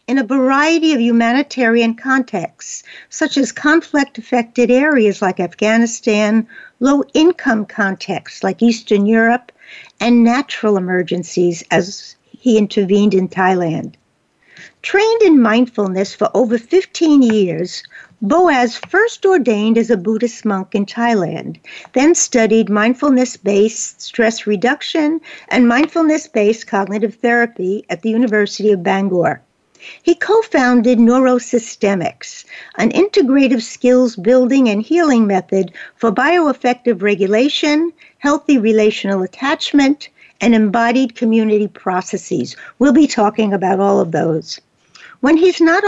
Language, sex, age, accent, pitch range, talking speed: English, female, 60-79, American, 210-275 Hz, 110 wpm